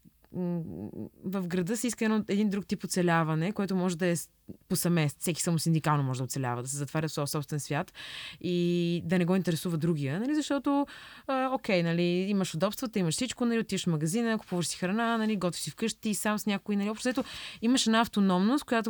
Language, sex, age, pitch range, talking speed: Bulgarian, female, 20-39, 175-230 Hz, 200 wpm